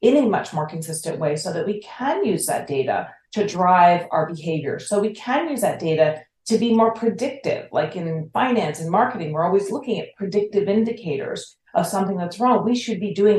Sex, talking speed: female, 205 wpm